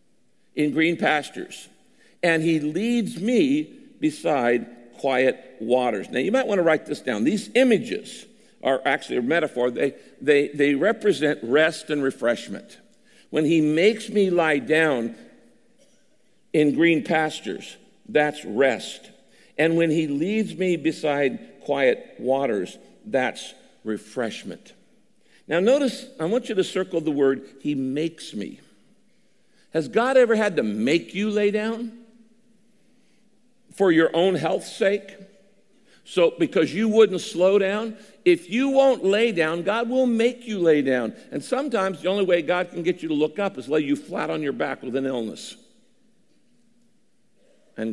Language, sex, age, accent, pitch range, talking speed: English, male, 60-79, American, 135-220 Hz, 150 wpm